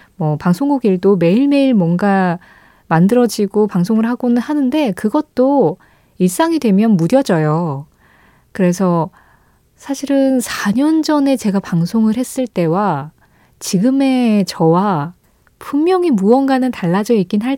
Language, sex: Korean, female